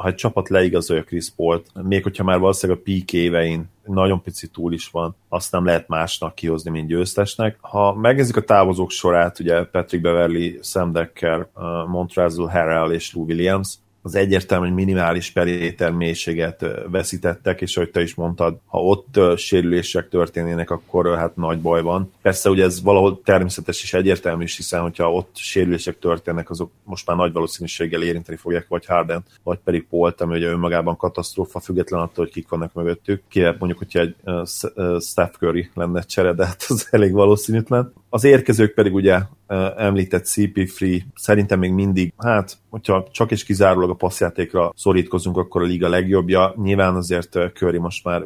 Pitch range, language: 85-95 Hz, Hungarian